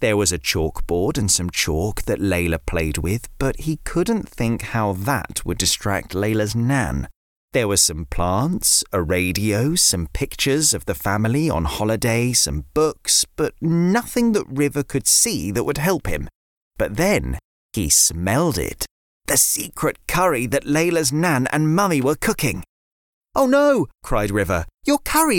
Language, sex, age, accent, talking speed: English, male, 30-49, British, 160 wpm